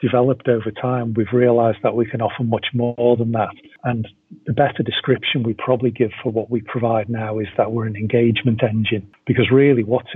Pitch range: 110-125 Hz